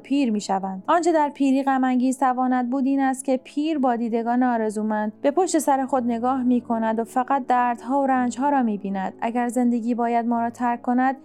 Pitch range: 235-275 Hz